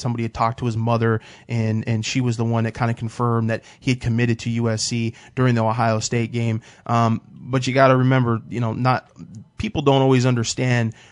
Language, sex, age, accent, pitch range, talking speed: English, male, 20-39, American, 115-130 Hz, 215 wpm